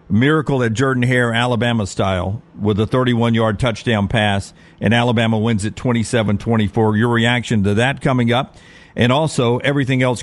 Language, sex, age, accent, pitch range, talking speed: English, male, 50-69, American, 110-135 Hz, 140 wpm